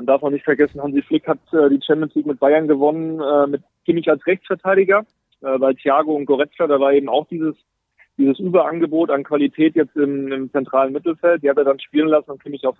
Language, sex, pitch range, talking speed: German, male, 130-155 Hz, 225 wpm